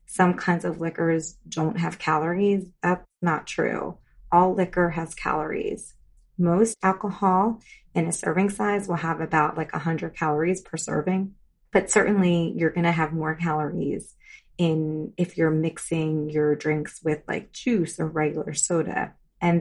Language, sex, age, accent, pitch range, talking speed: English, female, 30-49, American, 155-180 Hz, 150 wpm